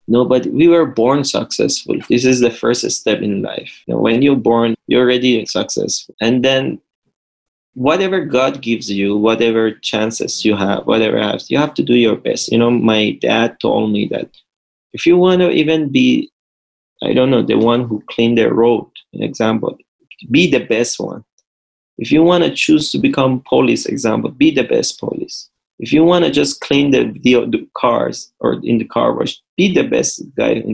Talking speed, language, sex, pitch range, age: 195 wpm, English, male, 115-140 Hz, 20-39